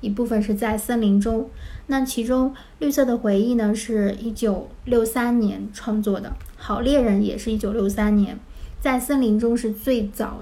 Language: Chinese